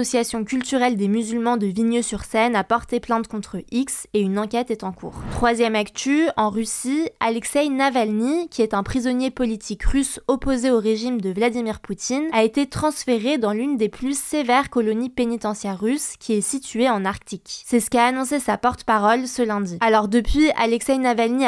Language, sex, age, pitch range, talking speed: French, female, 20-39, 215-260 Hz, 175 wpm